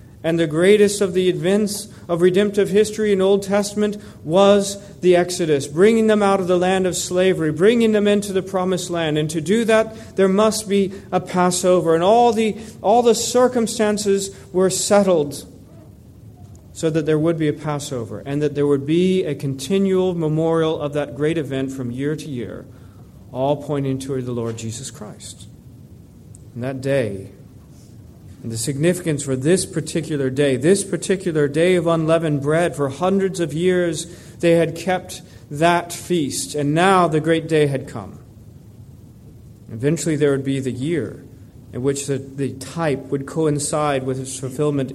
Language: English